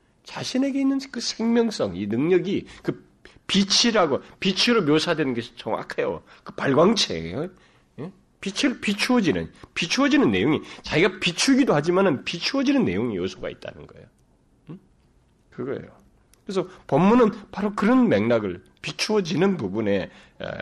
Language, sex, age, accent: Korean, male, 30-49, native